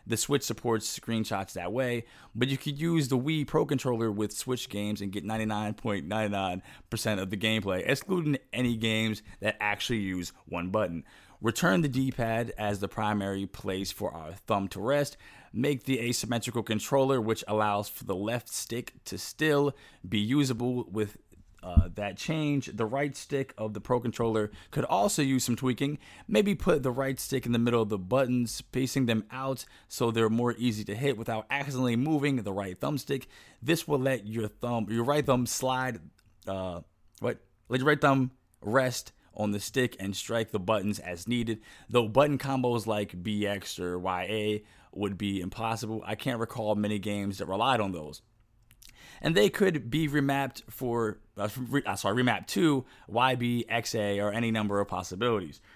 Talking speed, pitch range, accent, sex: 175 wpm, 105-135 Hz, American, male